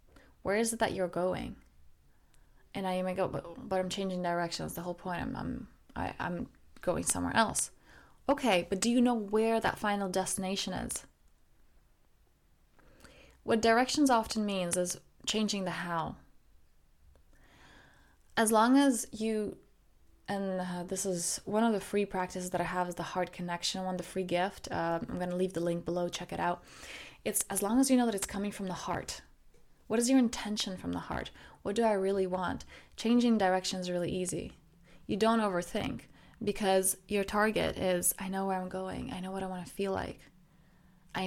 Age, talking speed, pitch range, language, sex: 20-39, 185 wpm, 175-205 Hz, English, female